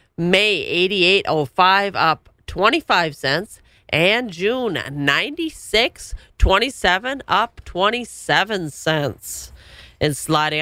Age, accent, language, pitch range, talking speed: 40-59, American, English, 155-215 Hz, 75 wpm